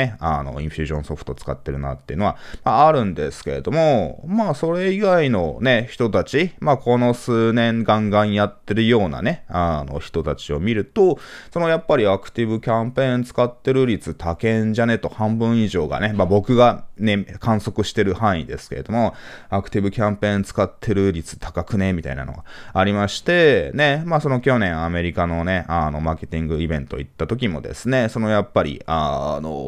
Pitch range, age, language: 85-120 Hz, 20-39, Japanese